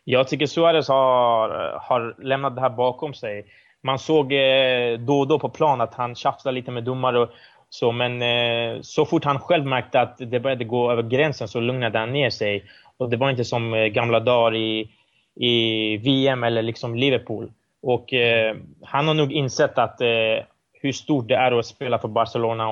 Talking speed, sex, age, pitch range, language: 200 wpm, male, 20-39, 115-135 Hz, Swedish